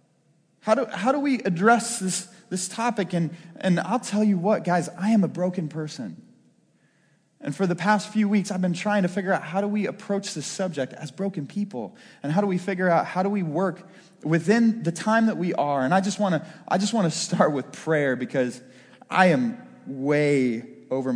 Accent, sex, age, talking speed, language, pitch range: American, male, 20-39, 200 wpm, English, 130-210 Hz